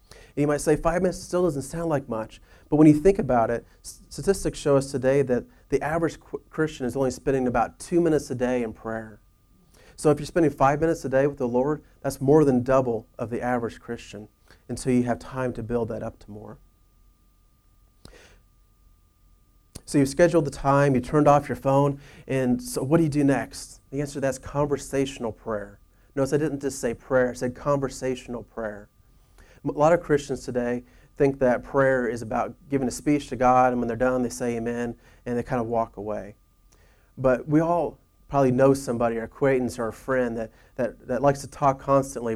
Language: English